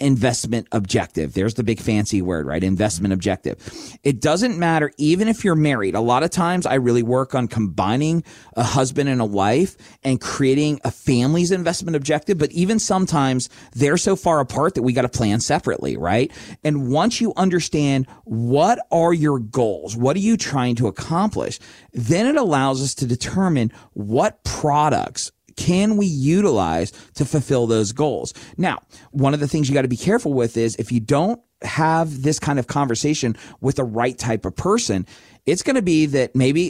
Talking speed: 185 wpm